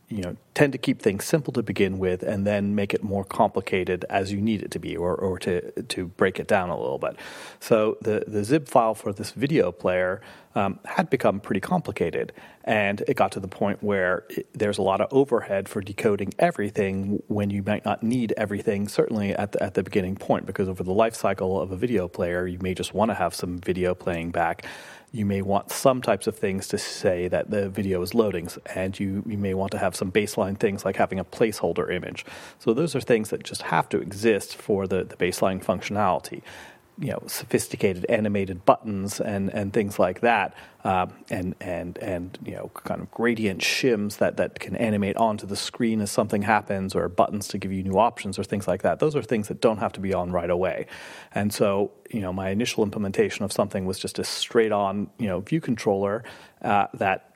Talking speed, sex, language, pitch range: 220 wpm, male, English, 95-105 Hz